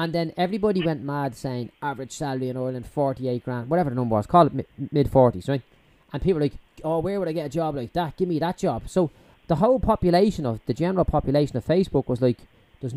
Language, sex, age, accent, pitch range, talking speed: English, male, 20-39, Irish, 130-175 Hz, 230 wpm